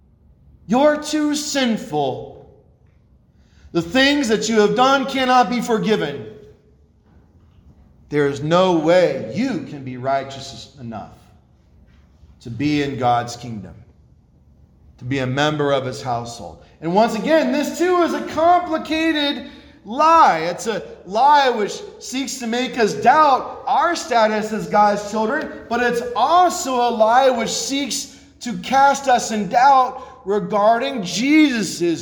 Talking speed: 130 wpm